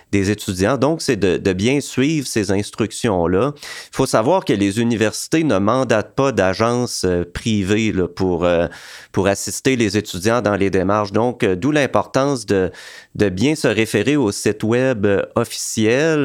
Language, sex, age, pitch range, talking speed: English, male, 30-49, 100-120 Hz, 150 wpm